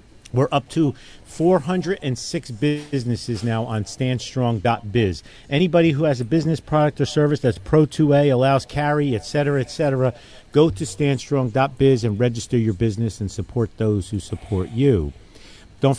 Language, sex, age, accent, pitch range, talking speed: English, male, 50-69, American, 115-145 Hz, 140 wpm